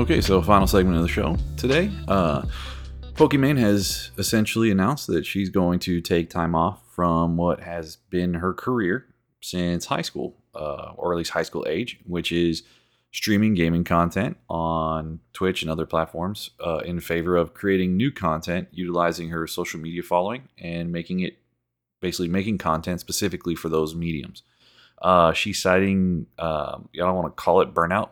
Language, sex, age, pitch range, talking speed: English, male, 30-49, 80-95 Hz, 170 wpm